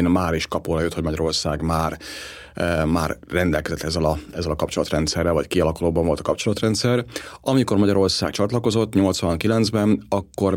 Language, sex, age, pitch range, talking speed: Hungarian, male, 30-49, 80-95 Hz, 135 wpm